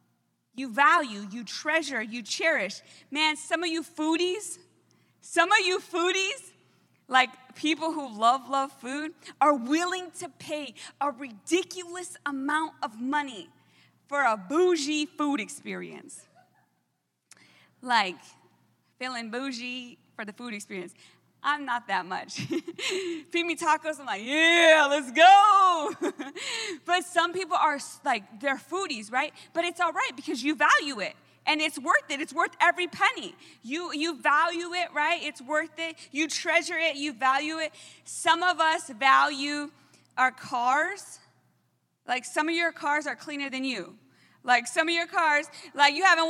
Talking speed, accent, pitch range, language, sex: 150 wpm, American, 275-335 Hz, English, female